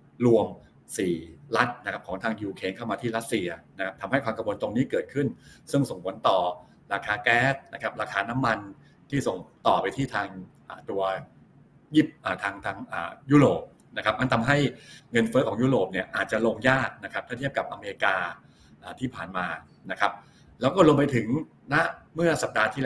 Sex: male